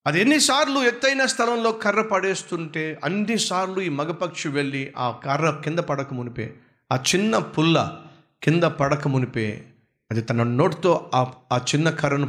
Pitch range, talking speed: 120-175 Hz, 120 wpm